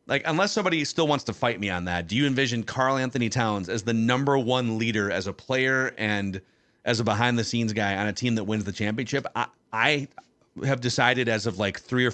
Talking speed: 220 wpm